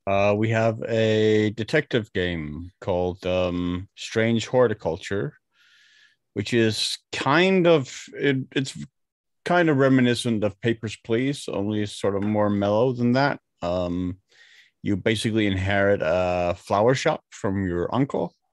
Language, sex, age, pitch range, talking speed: English, male, 30-49, 95-110 Hz, 125 wpm